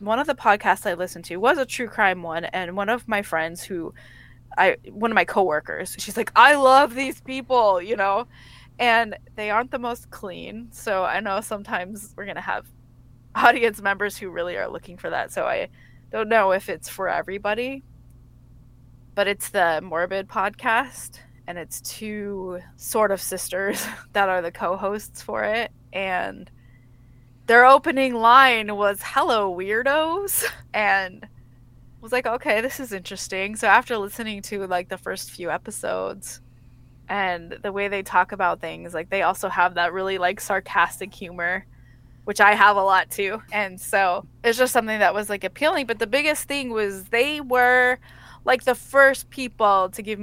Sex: female